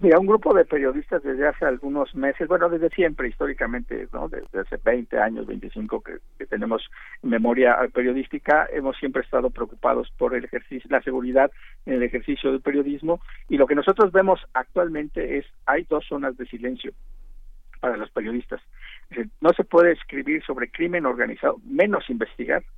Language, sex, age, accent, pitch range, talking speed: Spanish, male, 50-69, Mexican, 125-160 Hz, 165 wpm